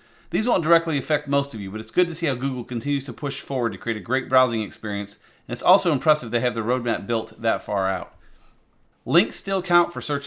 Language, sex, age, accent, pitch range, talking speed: English, male, 40-59, American, 115-145 Hz, 240 wpm